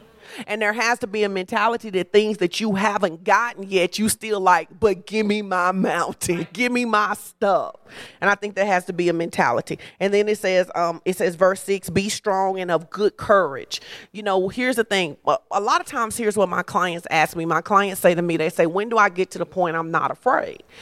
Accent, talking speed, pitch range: American, 235 wpm, 185-225 Hz